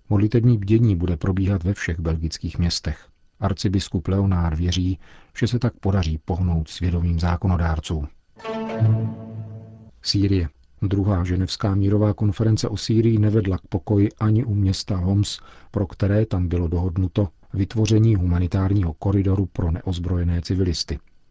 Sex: male